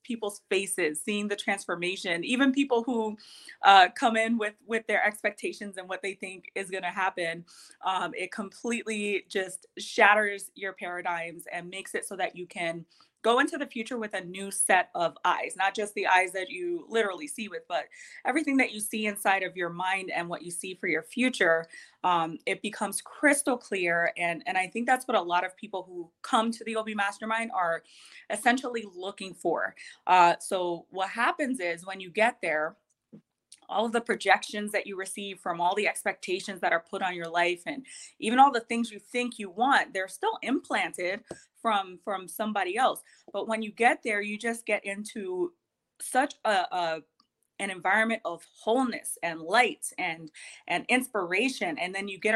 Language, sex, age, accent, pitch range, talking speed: English, female, 20-39, American, 185-235 Hz, 190 wpm